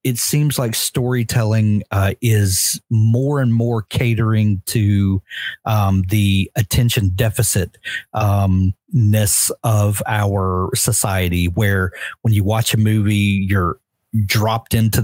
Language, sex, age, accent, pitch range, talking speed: English, male, 40-59, American, 100-120 Hz, 115 wpm